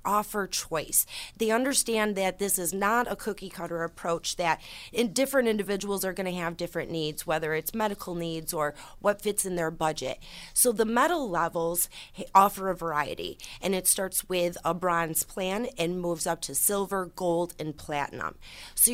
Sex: female